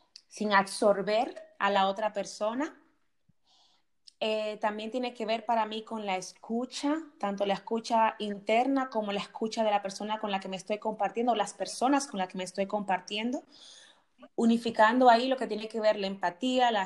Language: Spanish